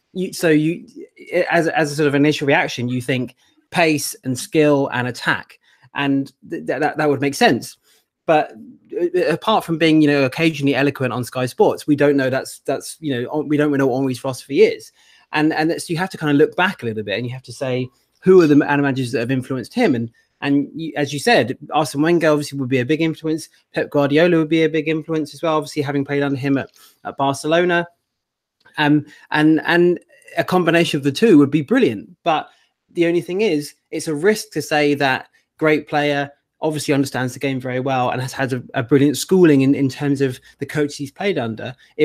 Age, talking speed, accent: 30-49, 220 wpm, British